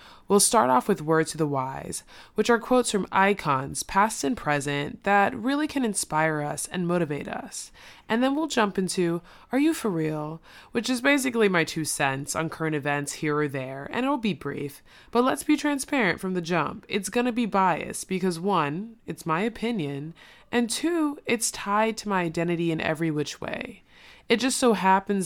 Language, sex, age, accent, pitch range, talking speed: English, female, 20-39, American, 160-230 Hz, 190 wpm